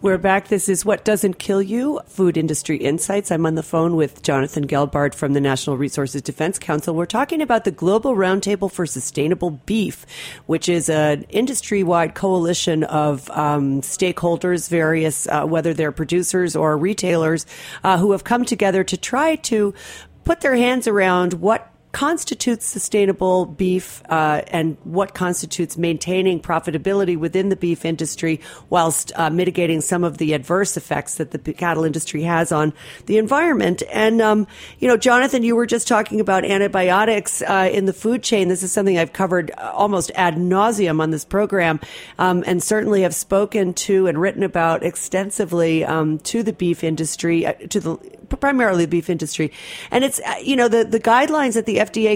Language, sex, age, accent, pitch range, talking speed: English, female, 40-59, American, 165-205 Hz, 170 wpm